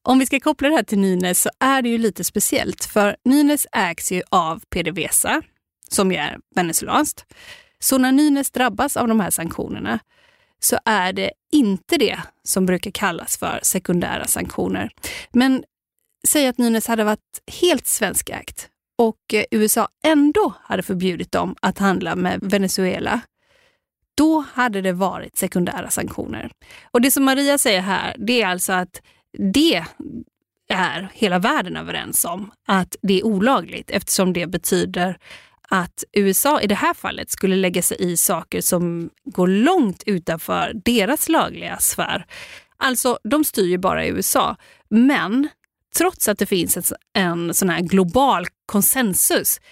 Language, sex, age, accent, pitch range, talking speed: Swedish, female, 30-49, native, 185-275 Hz, 150 wpm